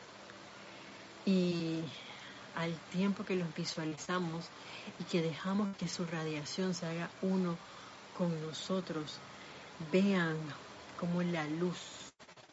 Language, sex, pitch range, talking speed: Spanish, female, 155-180 Hz, 100 wpm